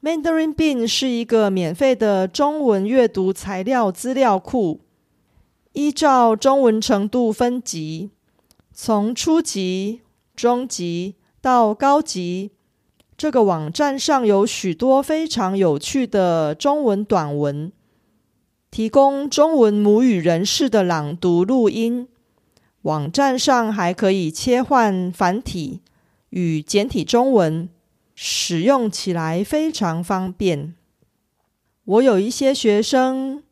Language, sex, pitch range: Korean, female, 185-260 Hz